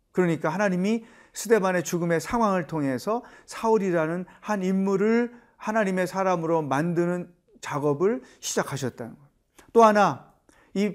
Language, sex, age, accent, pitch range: Korean, male, 40-59, native, 160-210 Hz